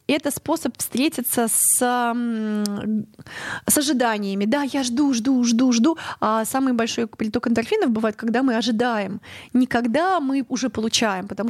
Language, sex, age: Russian, female, 20-39